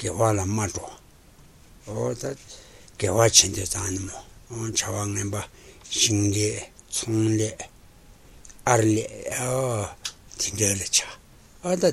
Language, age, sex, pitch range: Italian, 60-79, male, 100-115 Hz